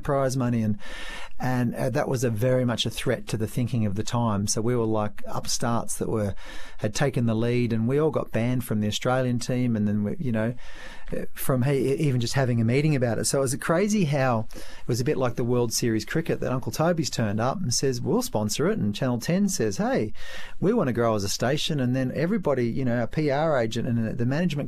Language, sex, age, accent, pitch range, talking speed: English, male, 40-59, Australian, 115-135 Hz, 240 wpm